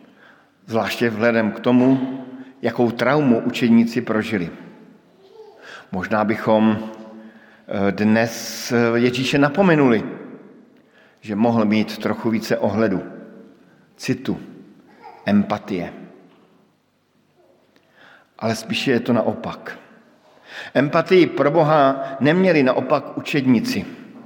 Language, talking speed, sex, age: Slovak, 80 wpm, male, 50-69